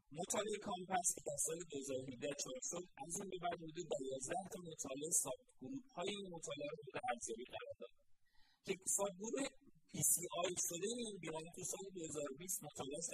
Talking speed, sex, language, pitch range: 115 wpm, male, Persian, 140-195 Hz